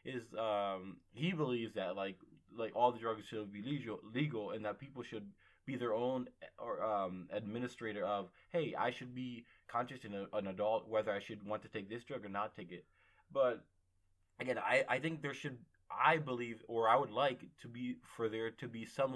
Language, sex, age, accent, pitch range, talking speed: English, male, 20-39, American, 105-125 Hz, 205 wpm